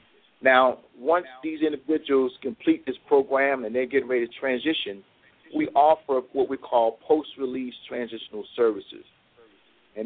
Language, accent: English, American